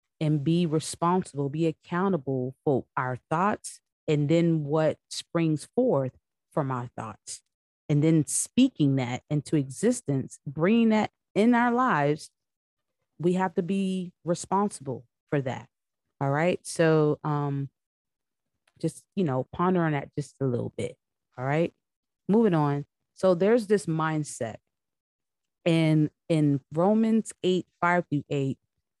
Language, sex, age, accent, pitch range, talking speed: English, female, 30-49, American, 135-175 Hz, 130 wpm